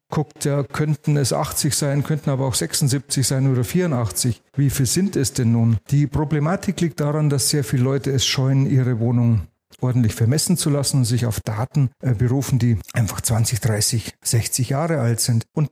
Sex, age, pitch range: male, 40-59, 120-140 Hz